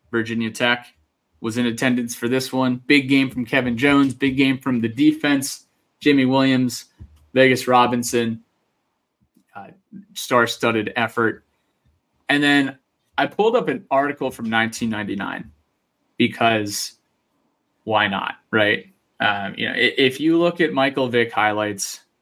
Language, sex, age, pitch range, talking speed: English, male, 20-39, 115-135 Hz, 135 wpm